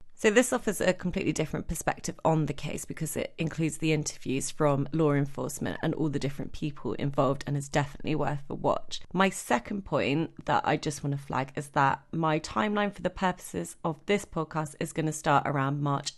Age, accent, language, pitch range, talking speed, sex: 30-49, British, English, 150-180 Hz, 195 wpm, female